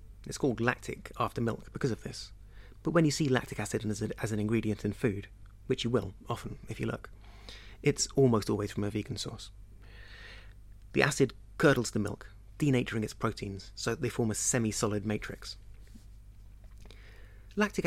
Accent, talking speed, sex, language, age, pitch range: British, 165 wpm, male, English, 30-49, 100-125 Hz